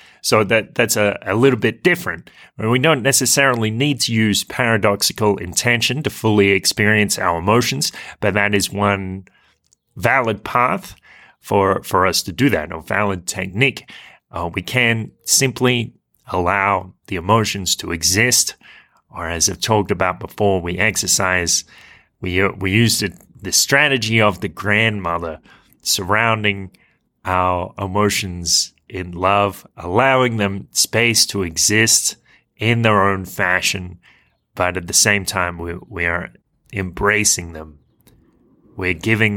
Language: English